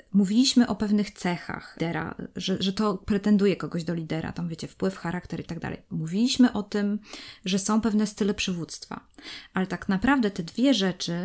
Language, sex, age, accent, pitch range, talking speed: Polish, female, 20-39, native, 180-220 Hz, 175 wpm